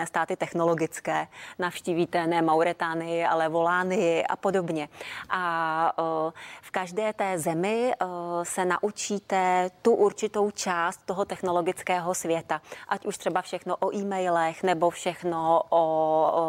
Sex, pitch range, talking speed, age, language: female, 170-195 Hz, 115 wpm, 30-49, Czech